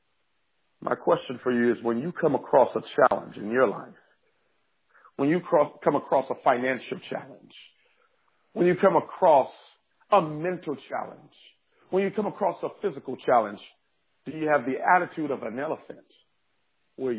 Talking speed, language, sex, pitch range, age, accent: 155 wpm, English, male, 170-225 Hz, 50-69, American